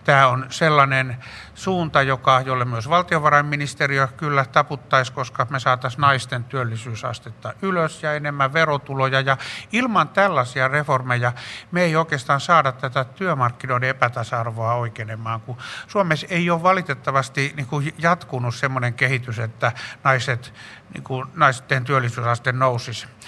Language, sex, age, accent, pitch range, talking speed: Finnish, male, 60-79, native, 120-140 Hz, 120 wpm